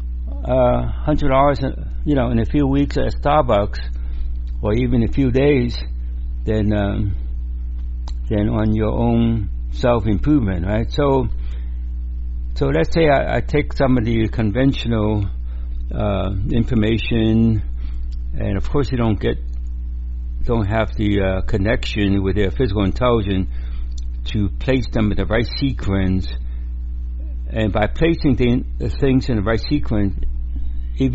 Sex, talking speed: male, 135 wpm